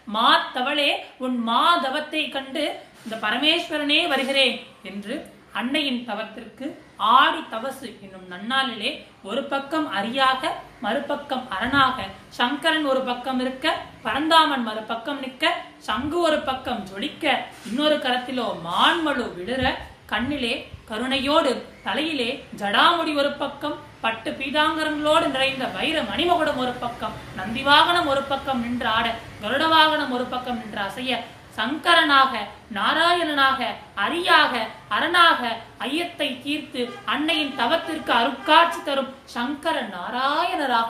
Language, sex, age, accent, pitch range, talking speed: Tamil, female, 30-49, native, 235-305 Hz, 85 wpm